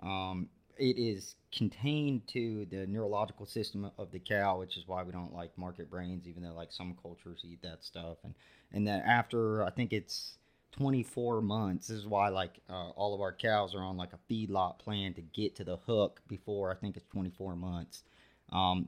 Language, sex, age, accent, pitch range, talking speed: English, male, 30-49, American, 90-105 Hz, 200 wpm